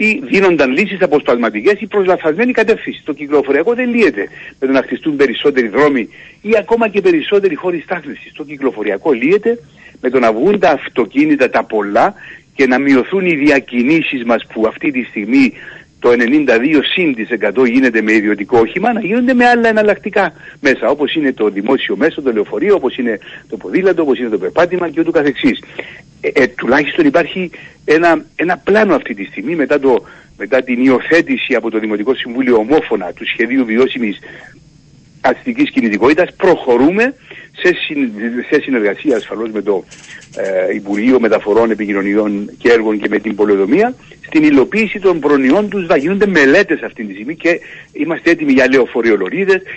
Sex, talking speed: male, 160 wpm